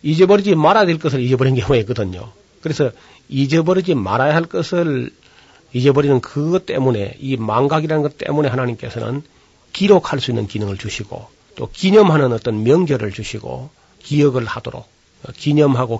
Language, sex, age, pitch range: Korean, male, 40-59, 115-145 Hz